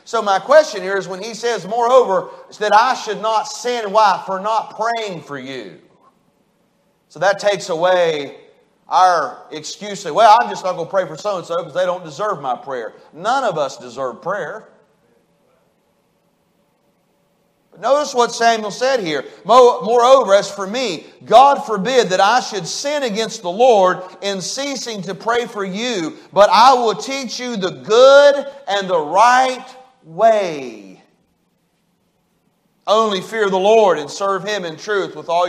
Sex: male